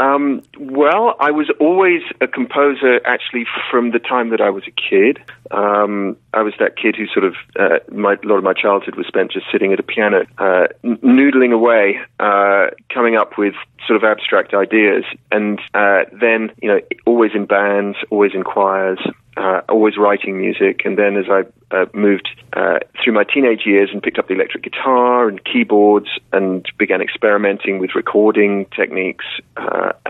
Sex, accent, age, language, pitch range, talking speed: male, British, 40-59, English, 100-125 Hz, 175 wpm